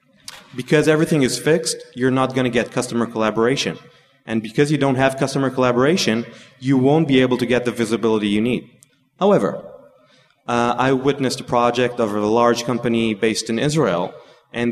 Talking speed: 170 wpm